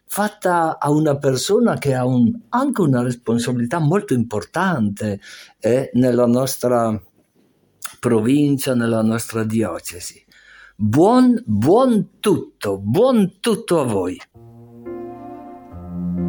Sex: male